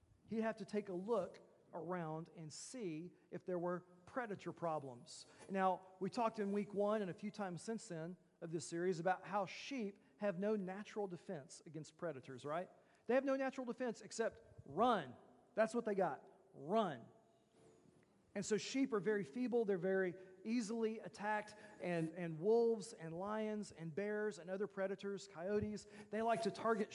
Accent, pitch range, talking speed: American, 175-220 Hz, 170 wpm